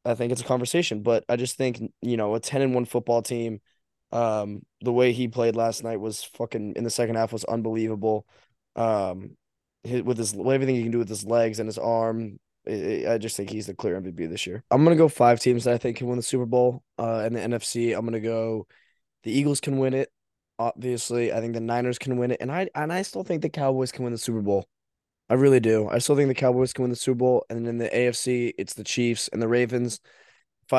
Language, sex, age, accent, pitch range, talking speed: English, male, 20-39, American, 115-125 Hz, 250 wpm